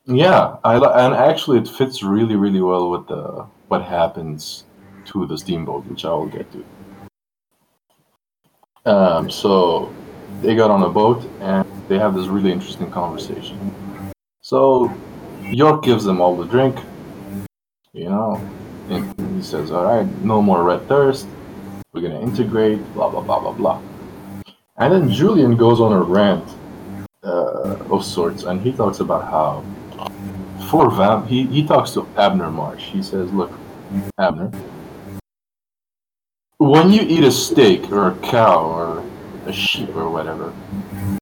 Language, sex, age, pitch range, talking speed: English, male, 20-39, 95-120 Hz, 145 wpm